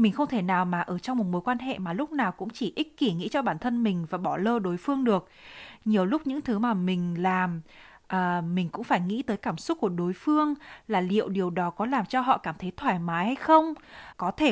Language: Vietnamese